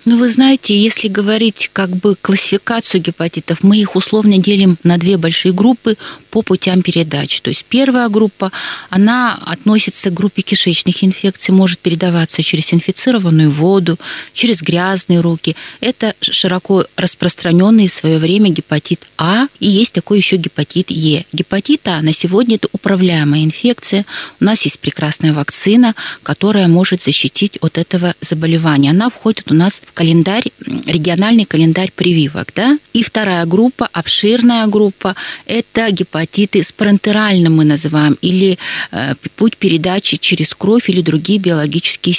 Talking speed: 140 wpm